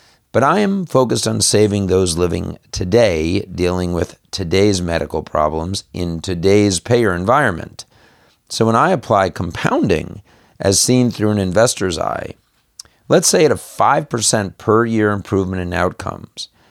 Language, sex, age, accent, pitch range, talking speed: English, male, 50-69, American, 85-105 Hz, 140 wpm